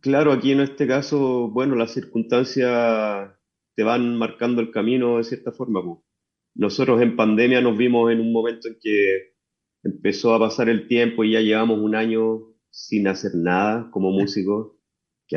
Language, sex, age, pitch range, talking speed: English, male, 30-49, 105-130 Hz, 165 wpm